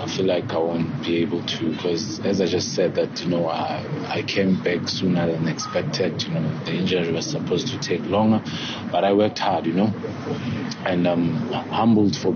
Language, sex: English, male